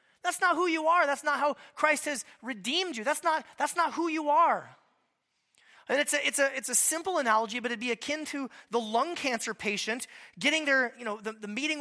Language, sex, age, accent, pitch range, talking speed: English, male, 20-39, American, 210-300 Hz, 225 wpm